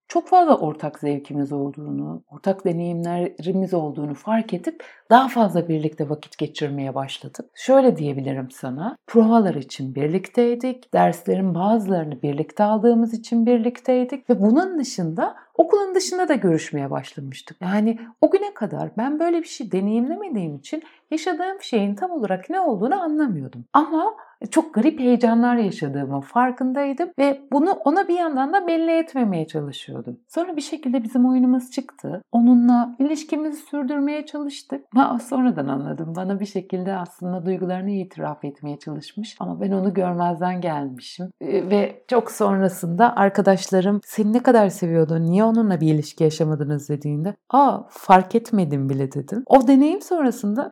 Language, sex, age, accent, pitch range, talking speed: Turkish, female, 60-79, native, 160-270 Hz, 135 wpm